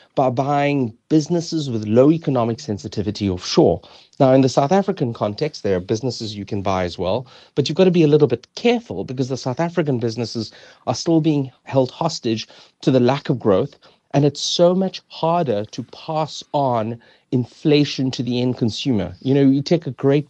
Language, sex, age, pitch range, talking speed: English, male, 30-49, 115-155 Hz, 190 wpm